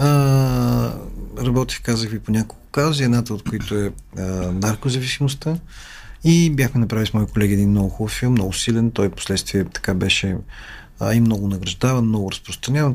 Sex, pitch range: male, 100-145 Hz